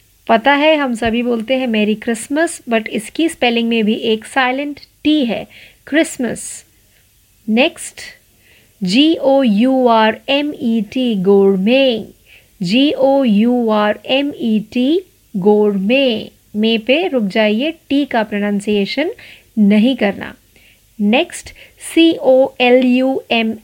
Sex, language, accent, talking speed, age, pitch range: female, Marathi, native, 130 wpm, 50-69, 210-270 Hz